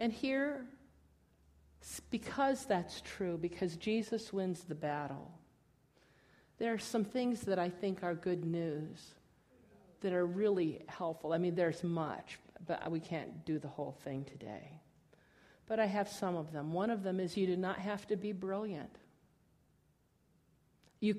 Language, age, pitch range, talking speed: English, 50-69, 165-210 Hz, 155 wpm